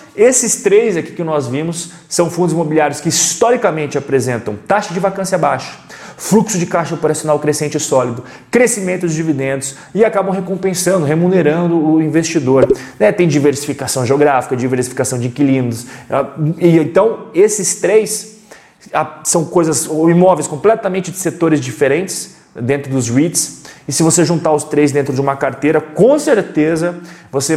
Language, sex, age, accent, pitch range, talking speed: Portuguese, male, 30-49, Brazilian, 130-170 Hz, 140 wpm